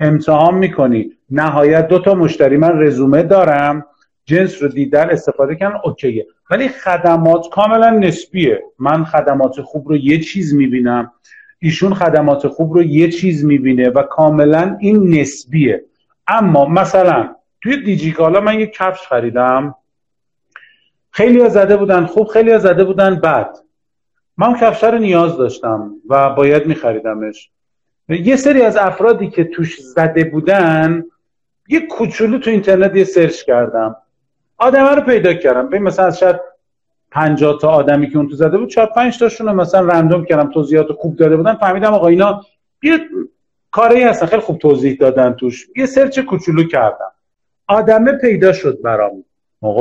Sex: male